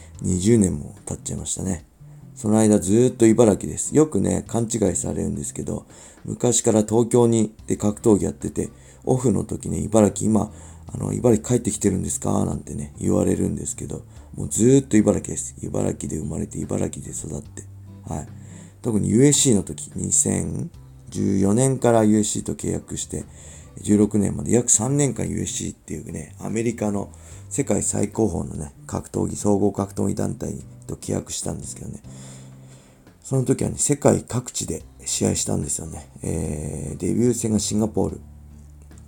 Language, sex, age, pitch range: Japanese, male, 40-59, 75-110 Hz